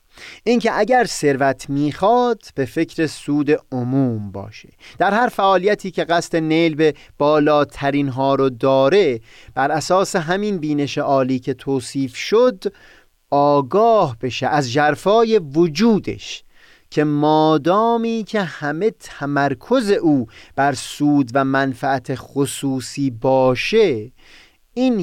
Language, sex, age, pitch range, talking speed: Persian, male, 30-49, 130-180 Hz, 110 wpm